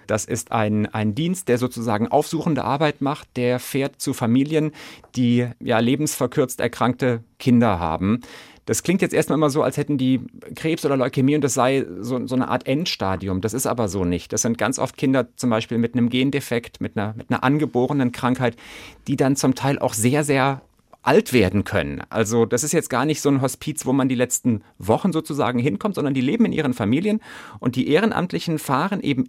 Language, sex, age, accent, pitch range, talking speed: German, male, 40-59, German, 115-145 Hz, 195 wpm